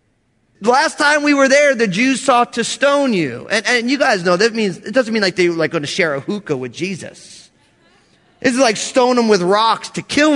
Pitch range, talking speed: 180-260 Hz, 230 wpm